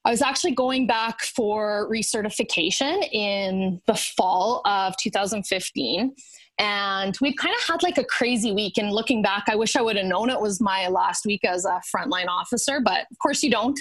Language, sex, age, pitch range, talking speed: English, female, 20-39, 200-250 Hz, 190 wpm